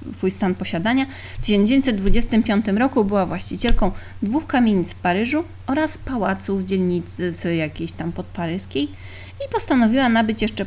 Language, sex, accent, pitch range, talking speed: Polish, female, native, 175-235 Hz, 130 wpm